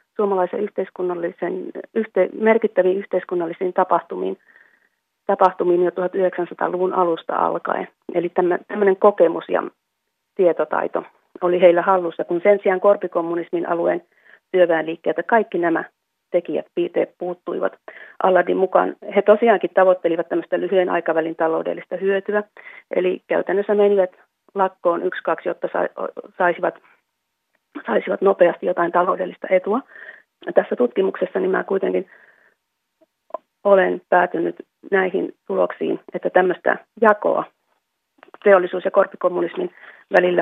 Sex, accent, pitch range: female, native, 180-205 Hz